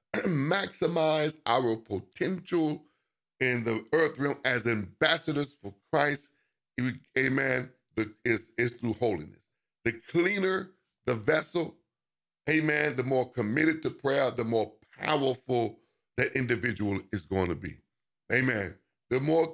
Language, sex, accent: English, male, American